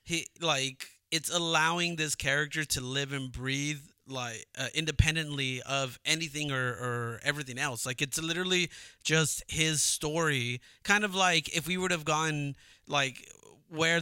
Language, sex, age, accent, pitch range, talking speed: English, male, 30-49, American, 130-160 Hz, 150 wpm